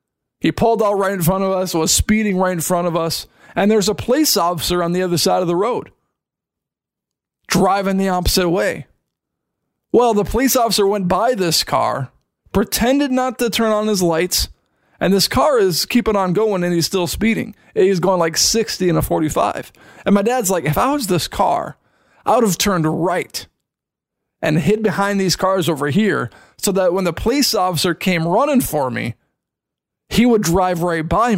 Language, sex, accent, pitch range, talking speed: English, male, American, 170-215 Hz, 190 wpm